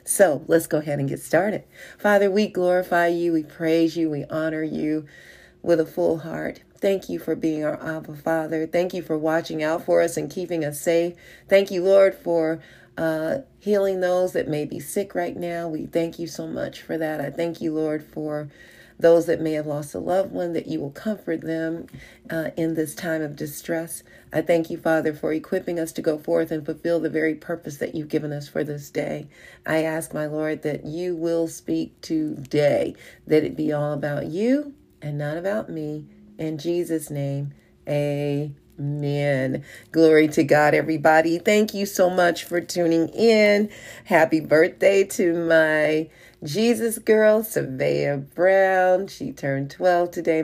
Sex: female